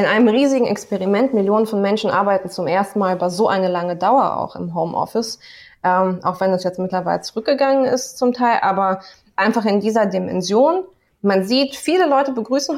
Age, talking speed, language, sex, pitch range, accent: 20-39, 185 wpm, German, female, 195-235 Hz, German